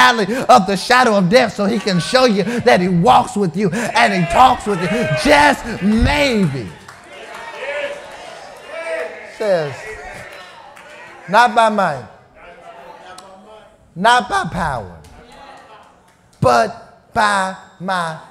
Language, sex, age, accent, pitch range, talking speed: English, male, 30-49, American, 185-240 Hz, 105 wpm